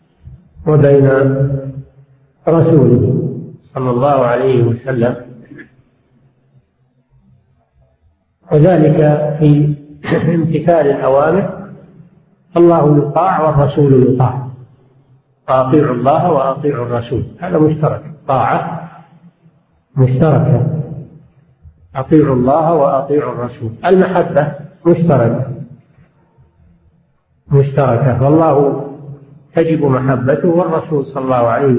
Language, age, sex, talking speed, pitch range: Arabic, 50-69, male, 70 wpm, 130-155 Hz